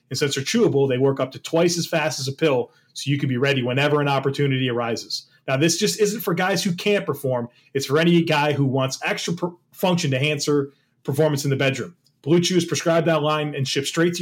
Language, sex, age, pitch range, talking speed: English, male, 30-49, 135-165 Hz, 240 wpm